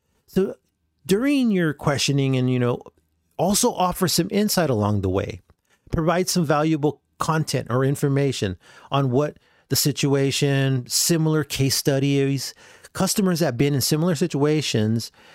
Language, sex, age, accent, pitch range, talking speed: English, male, 40-59, American, 120-165 Hz, 130 wpm